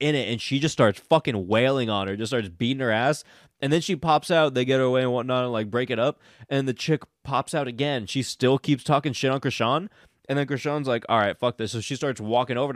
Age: 20-39